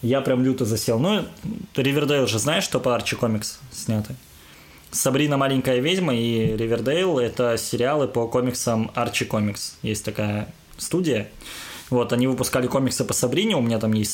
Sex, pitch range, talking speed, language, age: male, 115-150 Hz, 160 wpm, Russian, 20-39